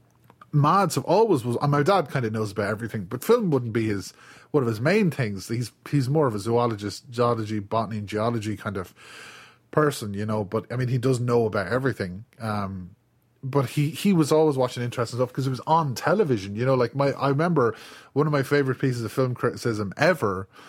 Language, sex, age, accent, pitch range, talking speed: English, male, 30-49, Irish, 115-155 Hz, 210 wpm